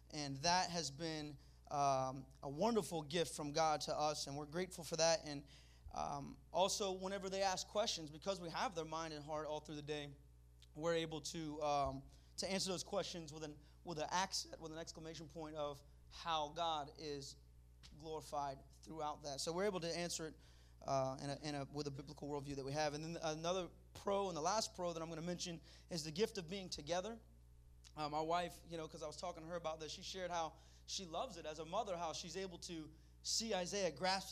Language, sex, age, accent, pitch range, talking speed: English, male, 30-49, American, 140-175 Hz, 220 wpm